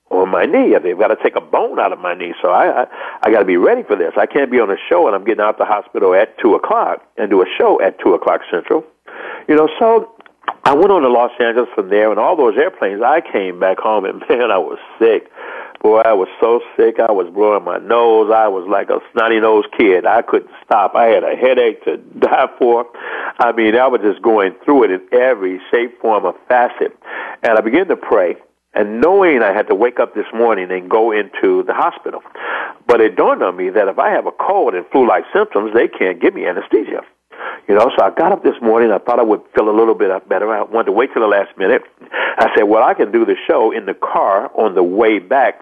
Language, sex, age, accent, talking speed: English, male, 60-79, American, 250 wpm